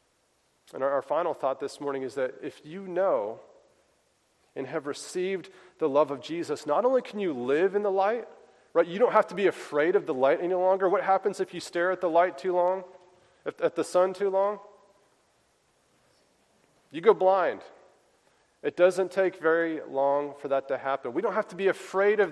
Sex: male